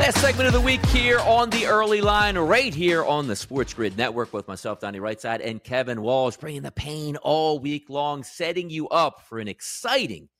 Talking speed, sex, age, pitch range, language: 210 wpm, male, 40-59, 115-165 Hz, English